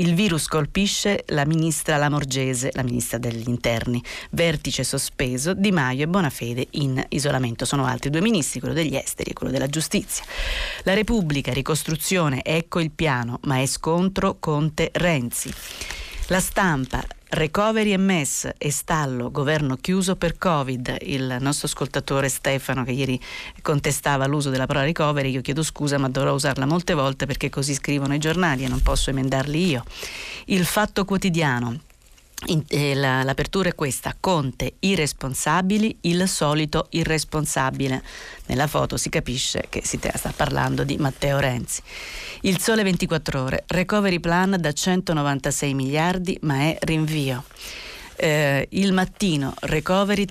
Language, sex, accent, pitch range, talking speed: Italian, female, native, 135-175 Hz, 140 wpm